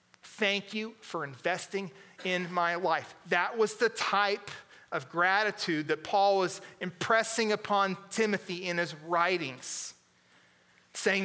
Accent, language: American, English